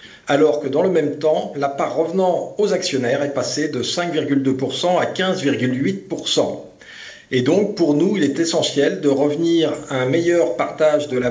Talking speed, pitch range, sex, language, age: 170 wpm, 135-160 Hz, male, French, 50-69